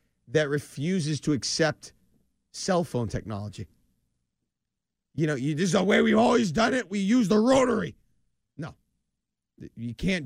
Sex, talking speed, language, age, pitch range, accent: male, 145 wpm, English, 40-59, 135-205 Hz, American